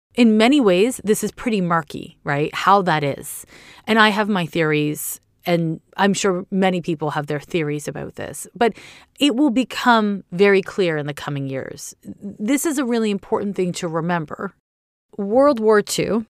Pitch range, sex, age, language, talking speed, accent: 160-210 Hz, female, 30-49, English, 175 wpm, American